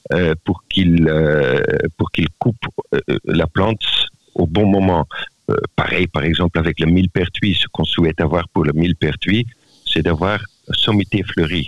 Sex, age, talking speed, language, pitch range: male, 50-69, 160 wpm, French, 85-105 Hz